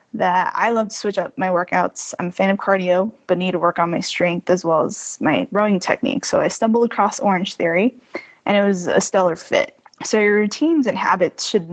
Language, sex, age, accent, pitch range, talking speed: English, female, 10-29, American, 185-225 Hz, 225 wpm